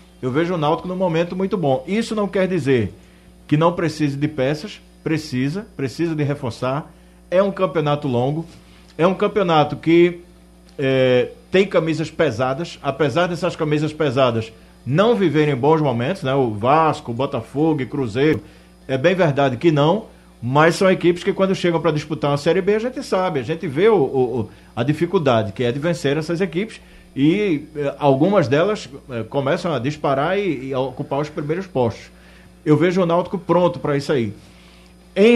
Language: Portuguese